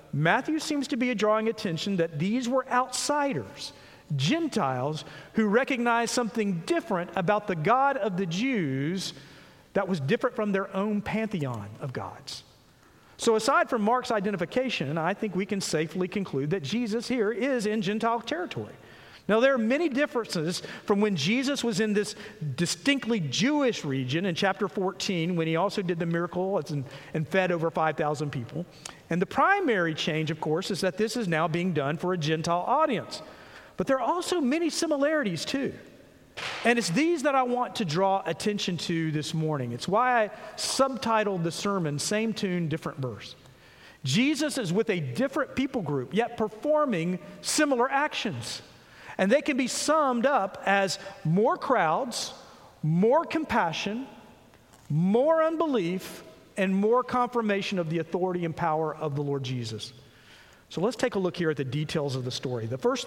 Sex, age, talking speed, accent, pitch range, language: male, 50-69, 165 wpm, American, 160-240 Hz, English